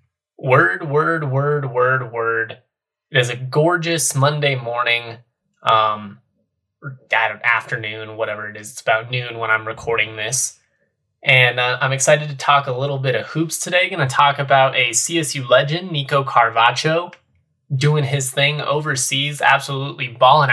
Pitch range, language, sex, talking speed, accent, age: 120-145 Hz, English, male, 145 wpm, American, 20-39